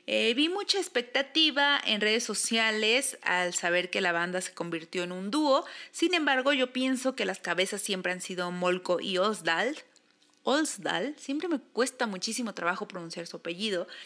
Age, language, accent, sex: 30-49, Spanish, Mexican, female